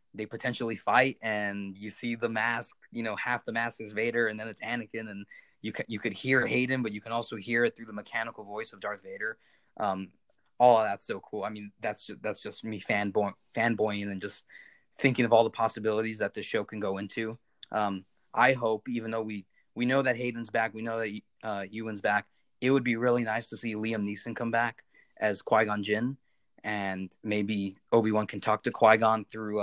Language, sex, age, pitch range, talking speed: English, male, 20-39, 100-115 Hz, 215 wpm